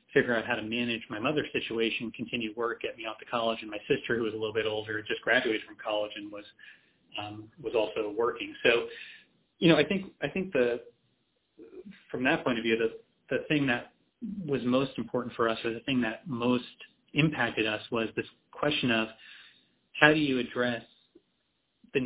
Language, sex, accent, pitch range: English, male, American, 115-135 Hz